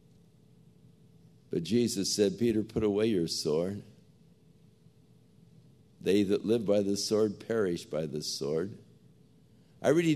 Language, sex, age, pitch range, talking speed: English, male, 60-79, 105-145 Hz, 120 wpm